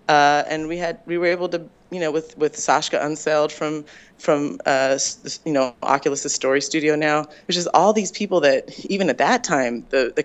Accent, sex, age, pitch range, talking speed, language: American, female, 20-39, 140-170 Hz, 205 wpm, English